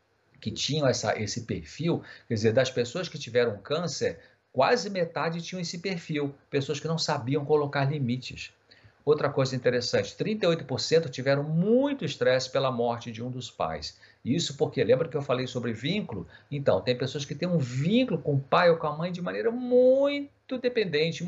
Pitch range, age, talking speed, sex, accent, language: 120-165 Hz, 50-69, 170 wpm, male, Brazilian, Portuguese